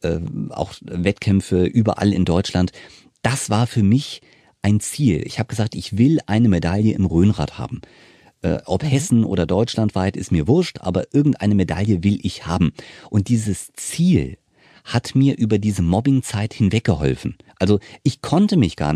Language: German